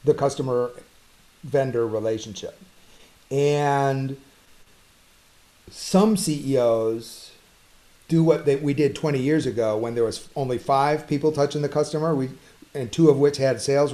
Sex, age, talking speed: male, 40-59, 130 wpm